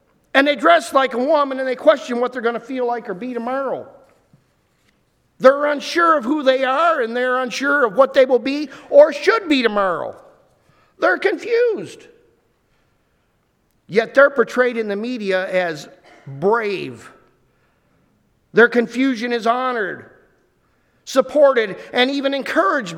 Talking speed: 140 wpm